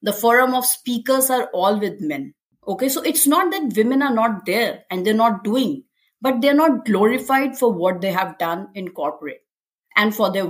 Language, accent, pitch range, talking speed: English, Indian, 200-265 Hz, 200 wpm